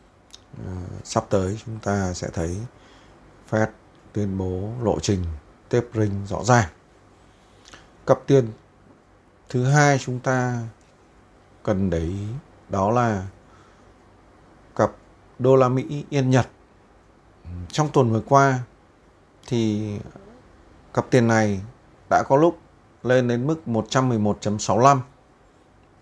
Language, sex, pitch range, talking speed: Vietnamese, male, 95-120 Hz, 105 wpm